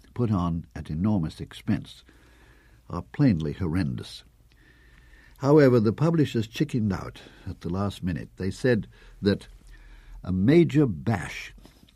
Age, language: 60-79, English